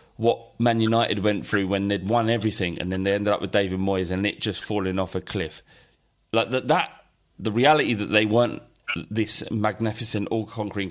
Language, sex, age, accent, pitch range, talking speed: English, male, 30-49, British, 105-135 Hz, 195 wpm